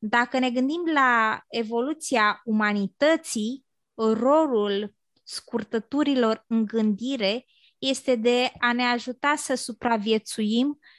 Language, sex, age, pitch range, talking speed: Romanian, female, 20-39, 230-270 Hz, 95 wpm